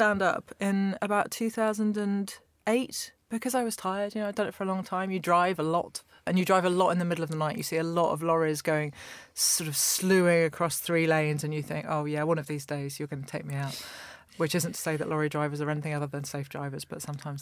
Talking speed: 260 wpm